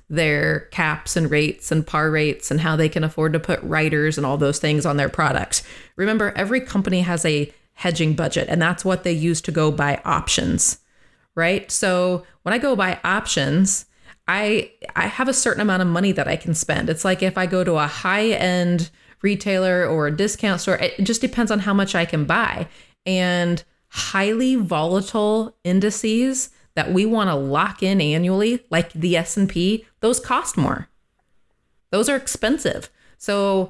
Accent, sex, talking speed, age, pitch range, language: American, female, 180 wpm, 20-39, 170-210 Hz, English